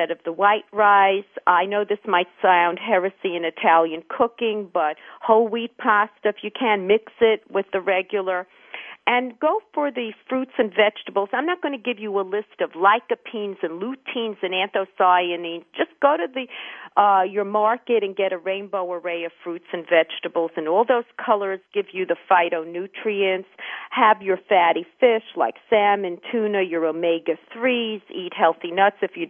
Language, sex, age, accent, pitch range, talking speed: English, female, 50-69, American, 180-235 Hz, 175 wpm